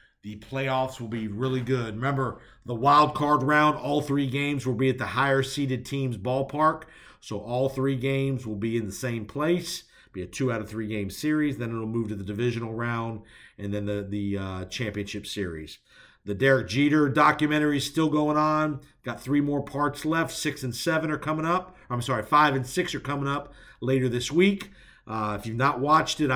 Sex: male